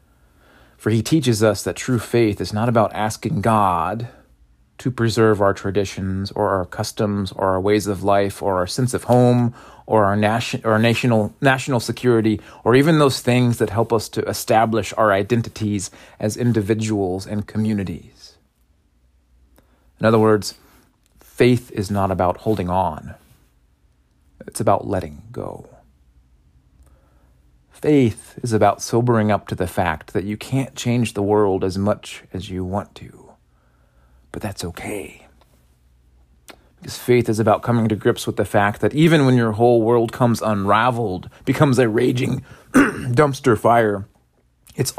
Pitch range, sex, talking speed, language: 85-120 Hz, male, 145 wpm, English